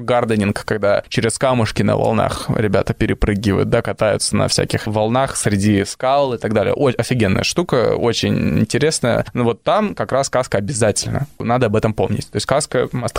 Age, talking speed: 20-39, 175 wpm